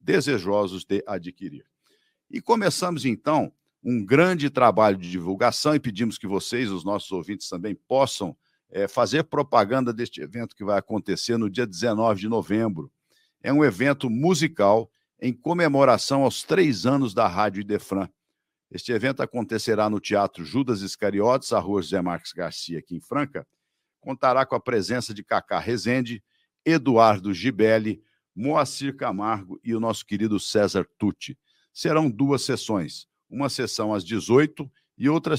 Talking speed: 145 wpm